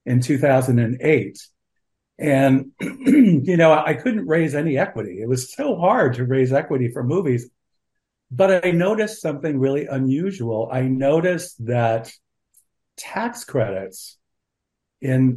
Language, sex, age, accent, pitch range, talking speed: English, male, 50-69, American, 125-160 Hz, 120 wpm